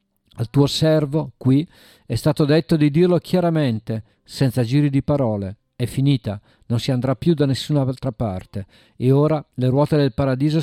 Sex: male